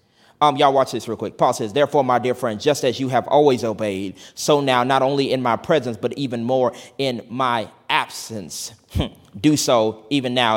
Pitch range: 135-190 Hz